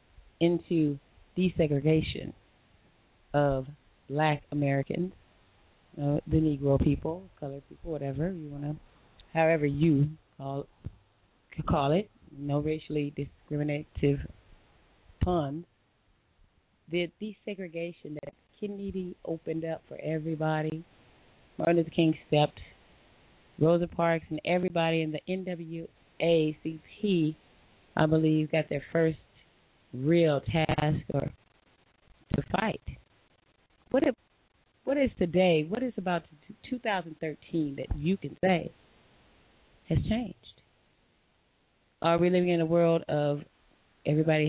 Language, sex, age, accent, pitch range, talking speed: English, female, 30-49, American, 145-170 Hz, 105 wpm